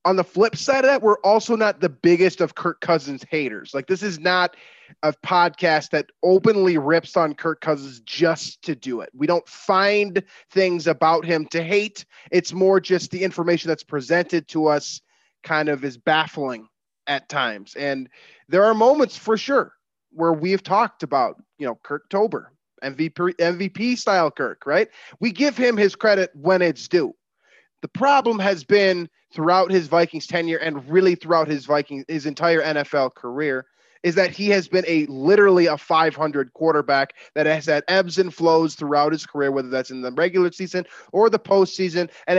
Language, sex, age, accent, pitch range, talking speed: English, male, 20-39, American, 155-190 Hz, 180 wpm